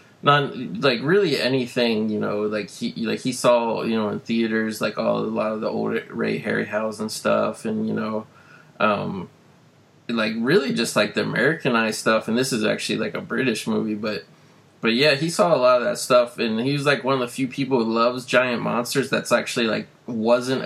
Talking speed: 210 wpm